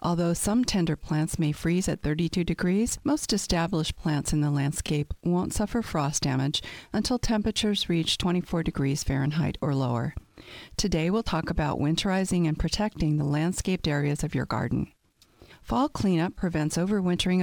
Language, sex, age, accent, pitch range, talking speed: English, female, 50-69, American, 145-185 Hz, 150 wpm